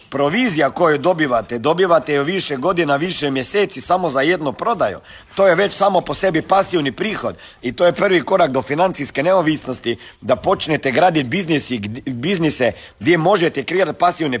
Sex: male